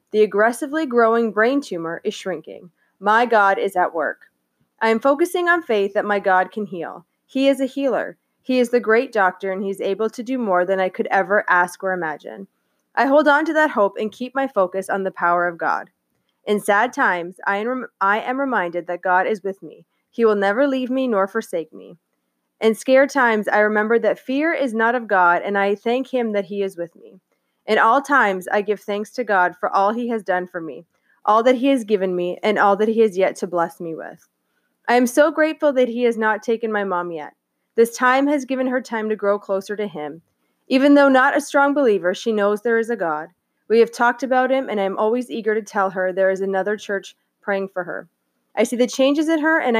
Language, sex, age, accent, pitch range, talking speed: English, female, 20-39, American, 190-250 Hz, 230 wpm